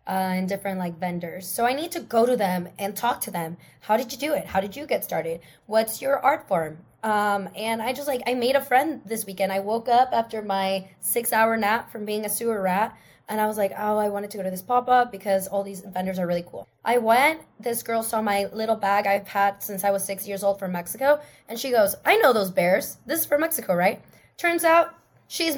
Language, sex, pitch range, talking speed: English, female, 195-250 Hz, 245 wpm